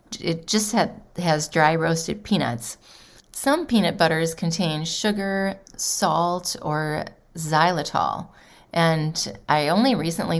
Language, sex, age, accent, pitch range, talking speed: English, female, 30-49, American, 155-190 Hz, 105 wpm